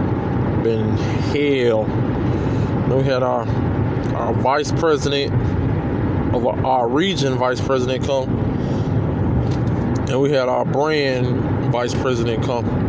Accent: American